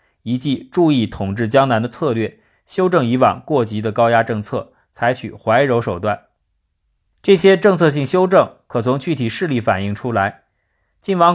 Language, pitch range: Chinese, 115-160 Hz